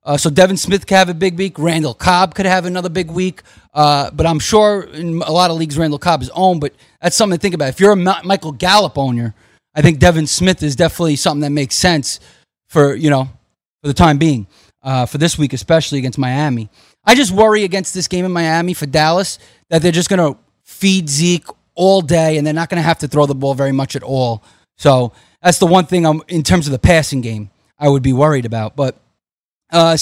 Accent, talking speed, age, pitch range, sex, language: American, 235 wpm, 30-49, 140-180 Hz, male, English